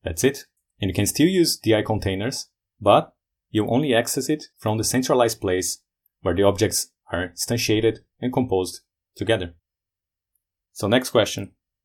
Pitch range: 95-120 Hz